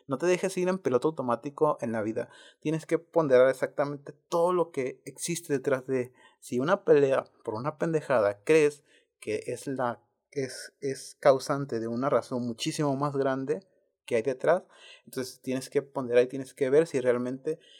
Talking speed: 170 wpm